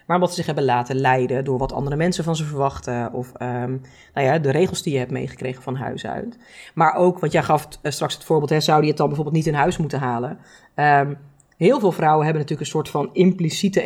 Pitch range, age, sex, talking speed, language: 140-165 Hz, 40-59, female, 245 wpm, Dutch